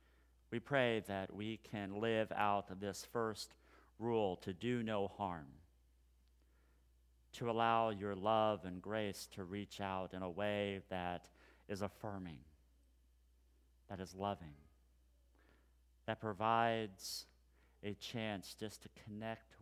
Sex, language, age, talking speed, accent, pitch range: male, English, 40-59, 120 wpm, American, 65-105 Hz